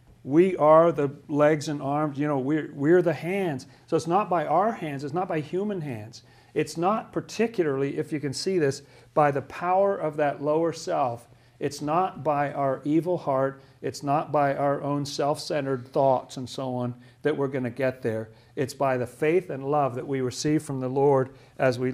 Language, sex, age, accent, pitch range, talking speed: English, male, 50-69, American, 125-150 Hz, 200 wpm